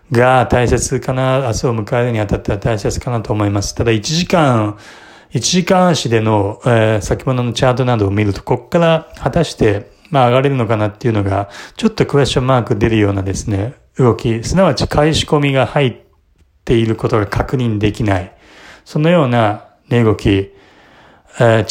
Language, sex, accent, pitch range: Japanese, male, native, 105-130 Hz